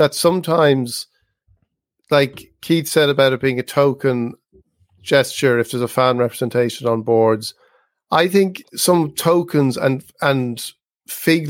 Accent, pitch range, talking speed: Irish, 125-155 Hz, 130 wpm